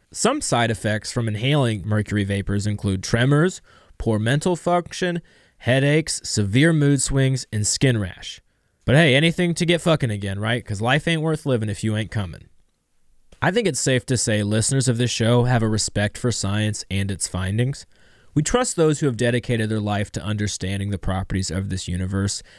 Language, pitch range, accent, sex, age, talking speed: English, 100-135 Hz, American, male, 20-39, 185 wpm